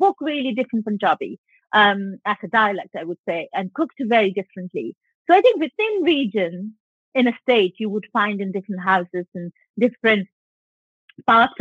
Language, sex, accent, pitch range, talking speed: English, female, Indian, 190-255 Hz, 165 wpm